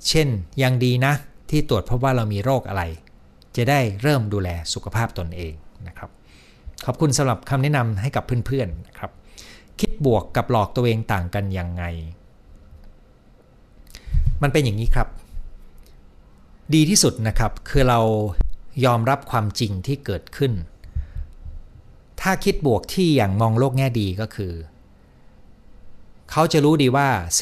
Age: 60-79